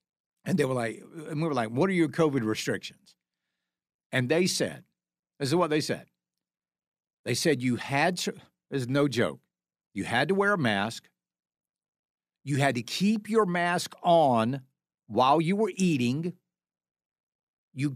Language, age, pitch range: English, 60-79, 125-195 Hz